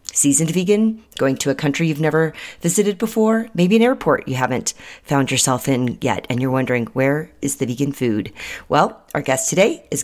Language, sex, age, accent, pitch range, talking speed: English, female, 30-49, American, 150-200 Hz, 190 wpm